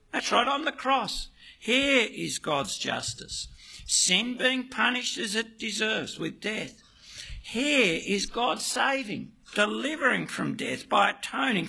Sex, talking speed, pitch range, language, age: male, 135 wpm, 185-245 Hz, English, 60-79